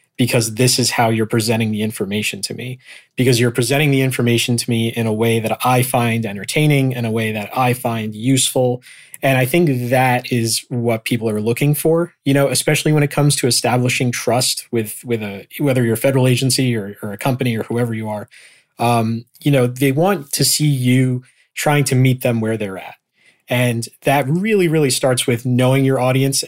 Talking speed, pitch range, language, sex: 205 wpm, 115-135 Hz, English, male